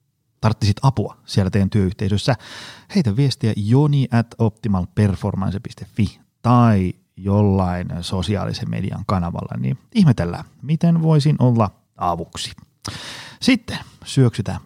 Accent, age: native, 30-49